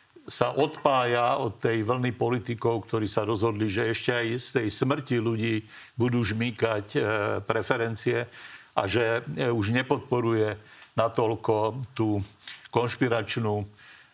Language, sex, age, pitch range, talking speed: Slovak, male, 60-79, 110-130 Hz, 110 wpm